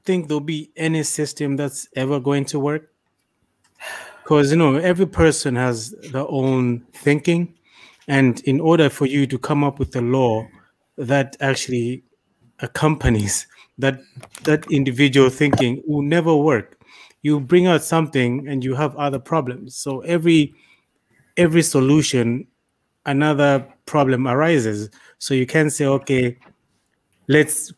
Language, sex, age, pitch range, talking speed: English, male, 30-49, 130-155 Hz, 135 wpm